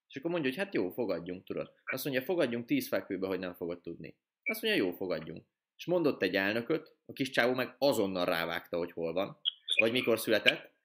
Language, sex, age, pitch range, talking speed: Hungarian, male, 20-39, 100-140 Hz, 205 wpm